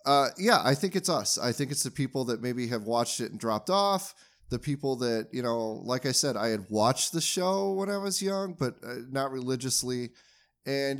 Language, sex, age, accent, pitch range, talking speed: English, male, 30-49, American, 110-150 Hz, 225 wpm